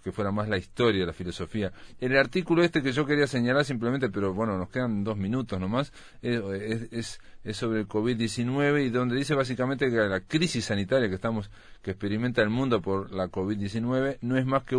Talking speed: 190 wpm